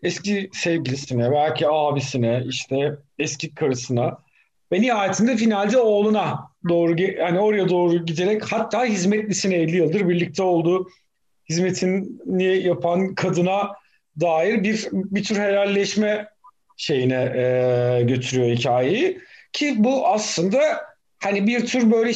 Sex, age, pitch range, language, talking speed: male, 50-69, 175-215 Hz, Turkish, 110 wpm